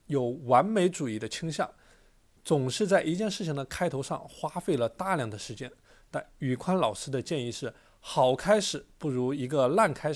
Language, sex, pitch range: Chinese, male, 125-180 Hz